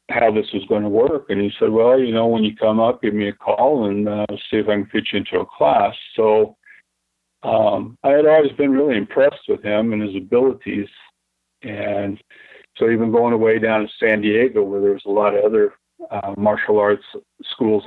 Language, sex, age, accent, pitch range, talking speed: English, male, 50-69, American, 100-120 Hz, 215 wpm